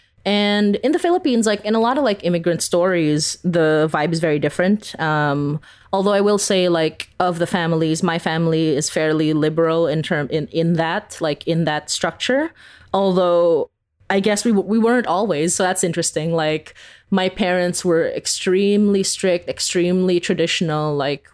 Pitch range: 160-195 Hz